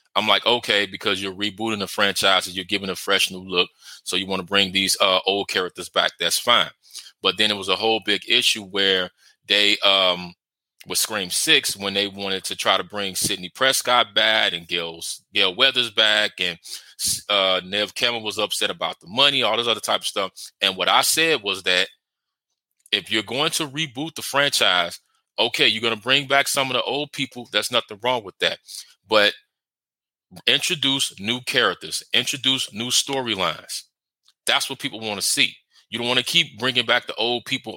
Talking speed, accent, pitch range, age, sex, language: 195 wpm, American, 100-125 Hz, 20-39, male, English